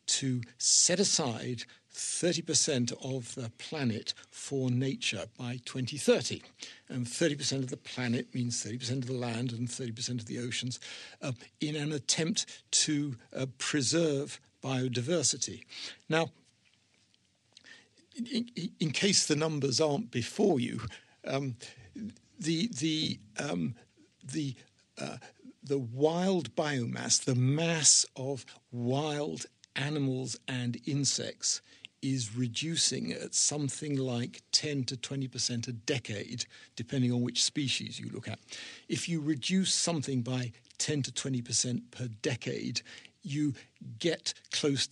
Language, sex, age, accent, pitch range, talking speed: English, male, 60-79, British, 120-150 Hz, 130 wpm